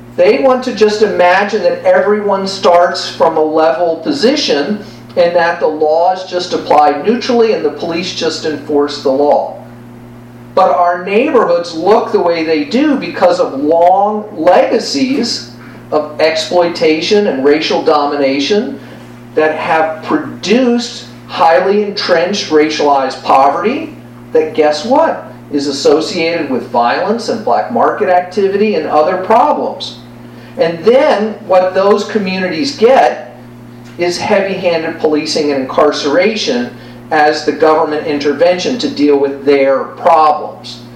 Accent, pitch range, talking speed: American, 125-205 Hz, 125 wpm